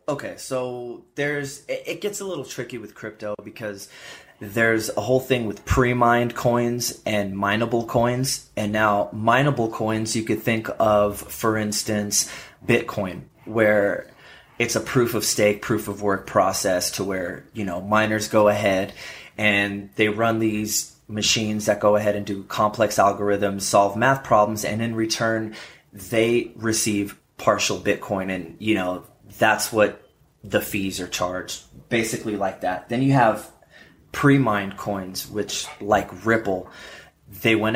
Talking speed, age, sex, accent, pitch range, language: 150 wpm, 20-39, male, American, 100-115 Hz, English